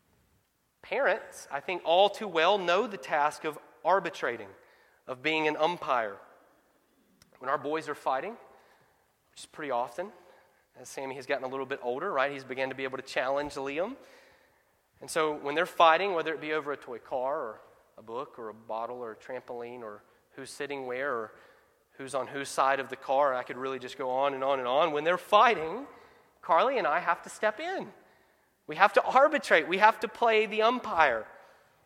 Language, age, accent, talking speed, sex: English, 30-49, American, 195 wpm, male